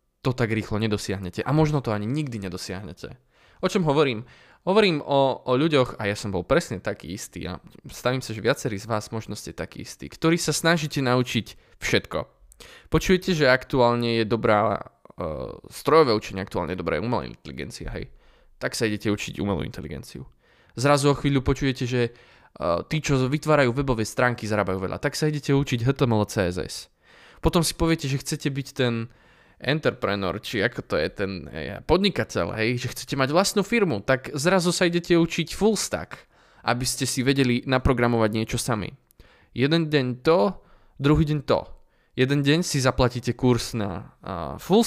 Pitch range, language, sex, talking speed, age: 110-150 Hz, Slovak, male, 170 wpm, 20-39